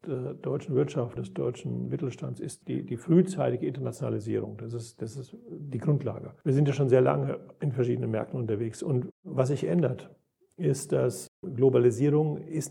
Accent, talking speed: German, 160 wpm